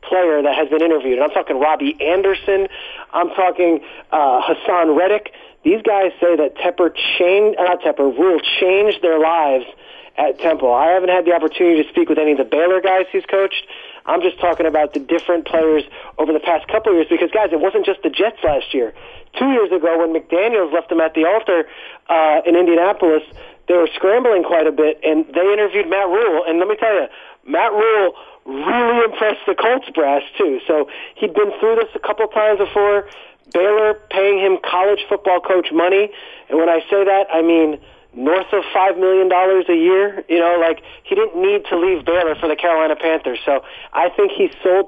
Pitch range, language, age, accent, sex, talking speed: 165-205 Hz, English, 40-59, American, male, 200 wpm